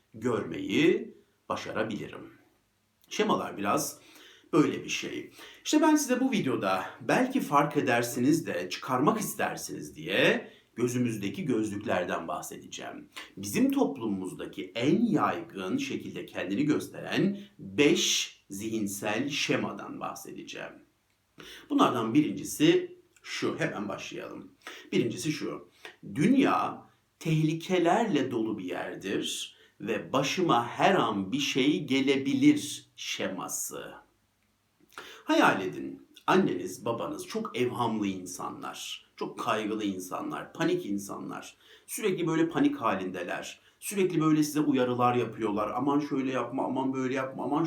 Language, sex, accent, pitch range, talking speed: Turkish, male, native, 125-200 Hz, 100 wpm